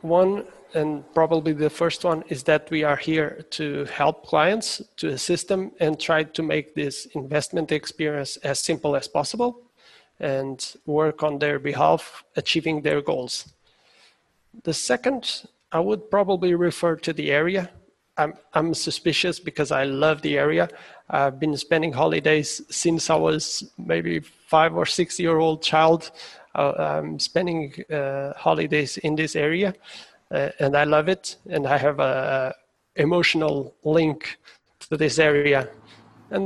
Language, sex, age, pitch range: English, male, 30-49, 145-170 Hz